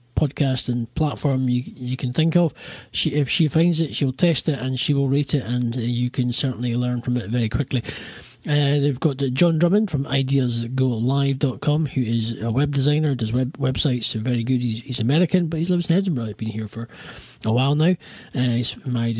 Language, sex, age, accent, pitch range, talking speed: English, male, 30-49, British, 120-150 Hz, 210 wpm